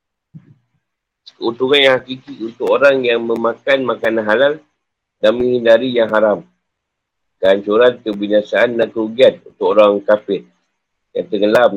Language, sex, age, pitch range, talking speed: Malay, male, 50-69, 110-140 Hz, 110 wpm